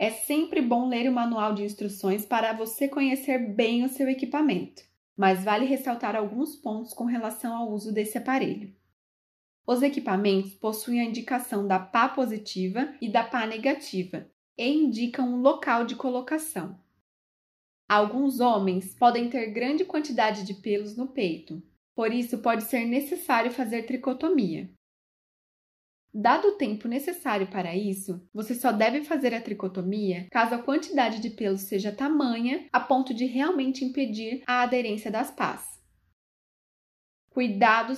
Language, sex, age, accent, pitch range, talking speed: Portuguese, female, 20-39, Brazilian, 210-260 Hz, 140 wpm